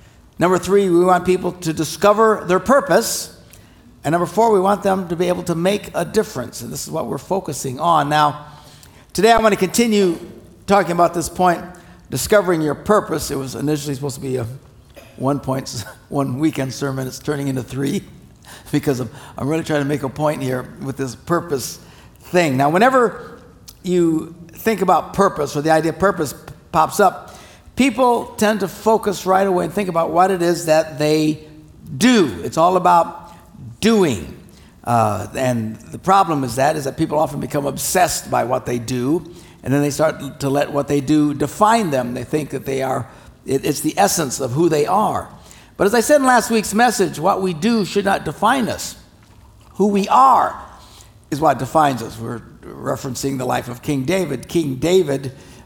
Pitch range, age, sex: 135-185 Hz, 60-79, male